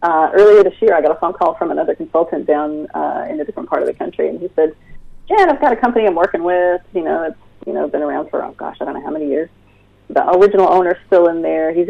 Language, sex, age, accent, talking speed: English, female, 30-49, American, 280 wpm